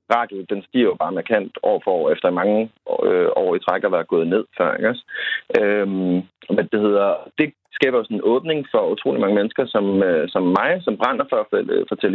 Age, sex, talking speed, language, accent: 30-49, male, 215 wpm, Danish, native